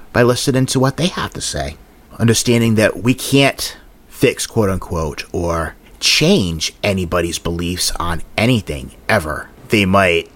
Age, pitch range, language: 30-49, 95-130 Hz, English